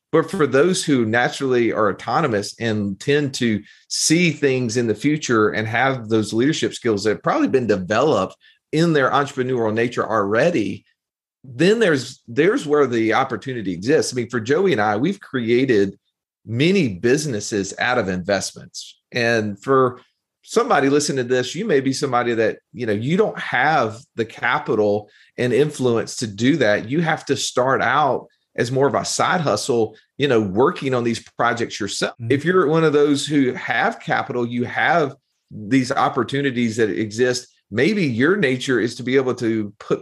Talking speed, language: 170 wpm, English